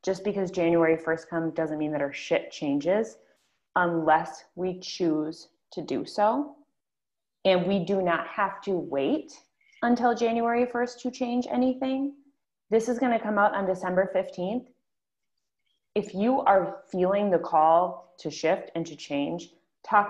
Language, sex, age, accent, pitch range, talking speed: English, female, 30-49, American, 170-230 Hz, 150 wpm